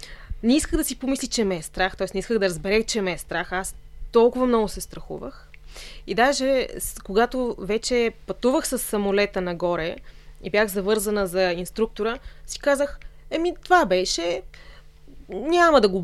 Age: 20-39